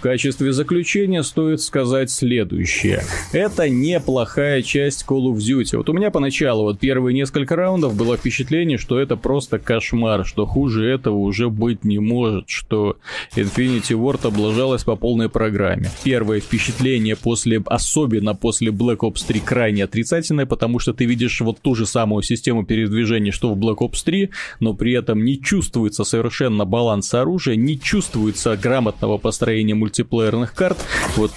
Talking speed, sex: 155 wpm, male